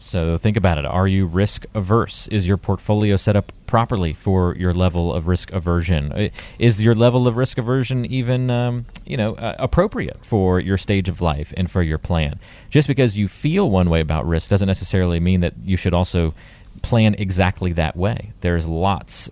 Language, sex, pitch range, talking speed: English, male, 90-110 Hz, 190 wpm